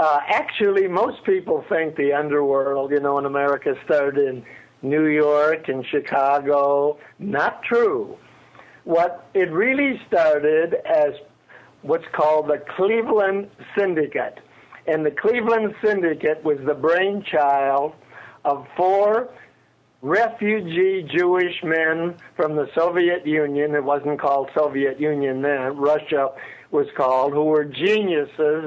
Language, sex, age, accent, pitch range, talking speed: English, male, 60-79, American, 150-185 Hz, 115 wpm